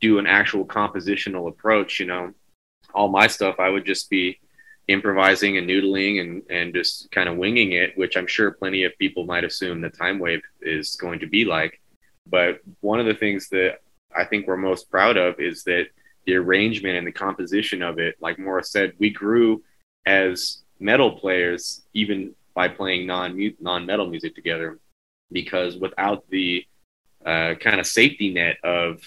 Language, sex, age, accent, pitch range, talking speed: English, male, 20-39, American, 90-105 Hz, 170 wpm